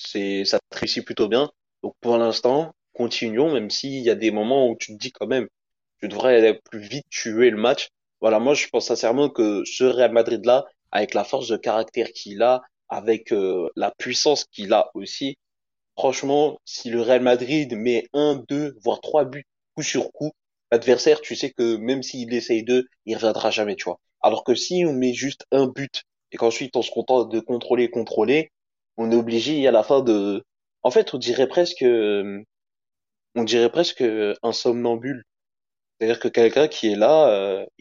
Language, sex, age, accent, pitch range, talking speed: French, male, 20-39, French, 115-145 Hz, 190 wpm